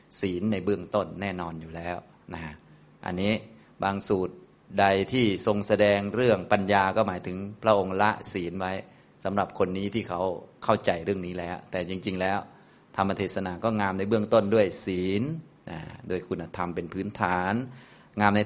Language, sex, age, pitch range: Thai, male, 30-49, 95-115 Hz